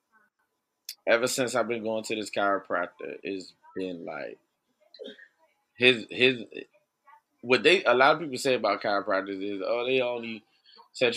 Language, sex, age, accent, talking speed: English, male, 20-39, American, 145 wpm